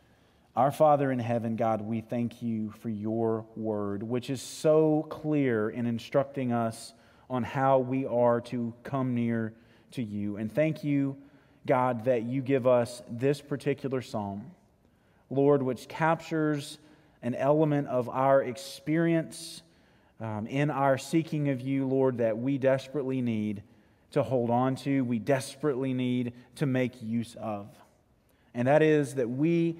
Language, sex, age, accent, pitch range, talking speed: English, male, 30-49, American, 120-150 Hz, 145 wpm